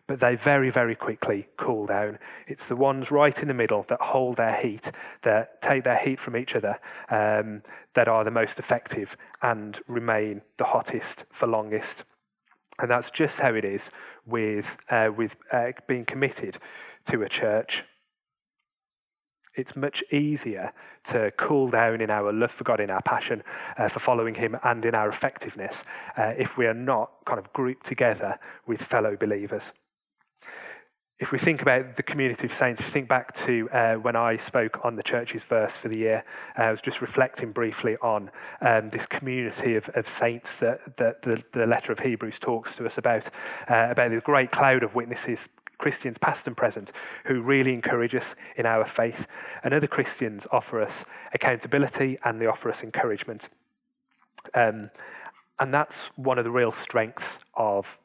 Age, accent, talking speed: 30-49, British, 175 wpm